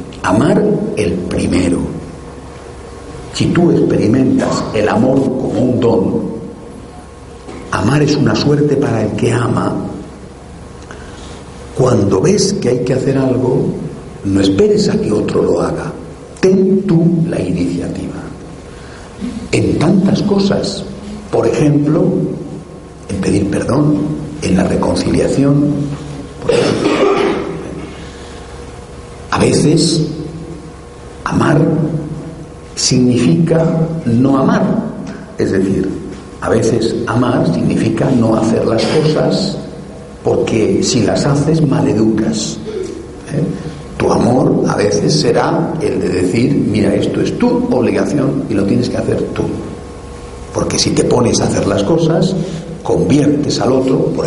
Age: 60-79